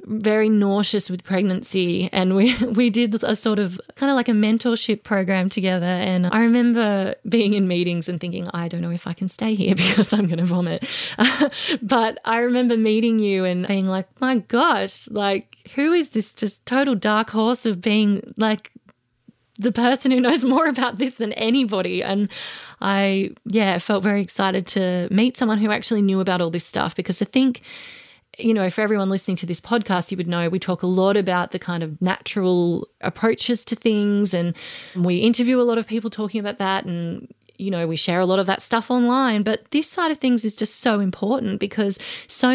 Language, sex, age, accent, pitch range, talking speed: English, female, 20-39, Australian, 185-230 Hz, 200 wpm